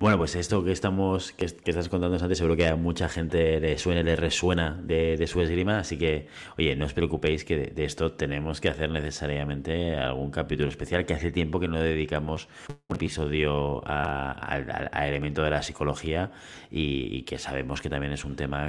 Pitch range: 75-90 Hz